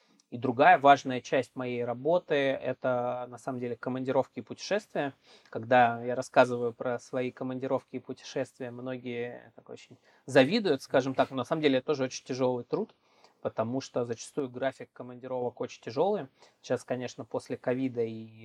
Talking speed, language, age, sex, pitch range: 150 wpm, Russian, 20-39, male, 120-135 Hz